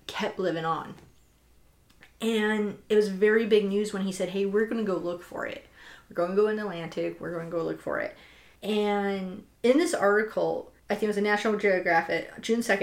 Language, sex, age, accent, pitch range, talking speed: English, female, 30-49, American, 190-230 Hz, 210 wpm